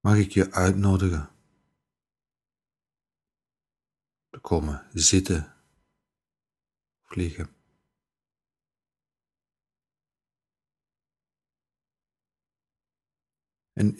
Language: Dutch